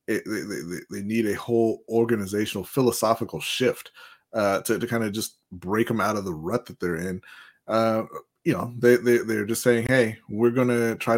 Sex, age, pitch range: male, 20-39, 105-125 Hz